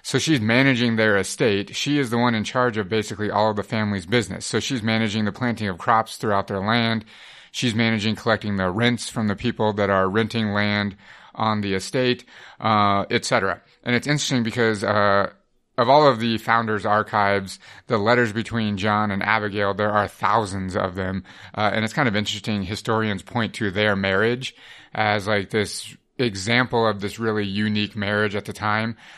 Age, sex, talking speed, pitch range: 30-49, male, 185 wpm, 100-110 Hz